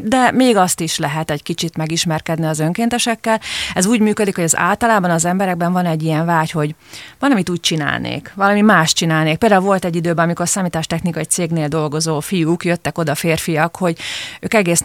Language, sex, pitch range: Hungarian, female, 160-190 Hz